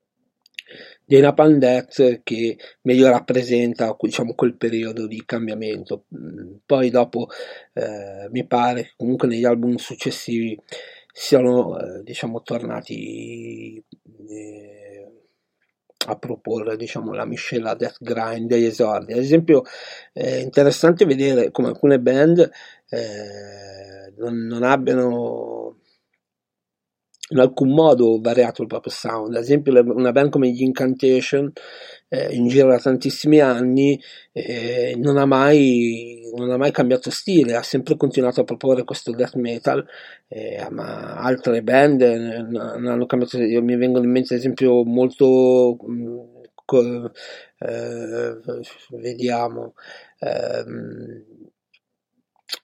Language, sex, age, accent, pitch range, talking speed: Italian, male, 40-59, native, 115-135 Hz, 120 wpm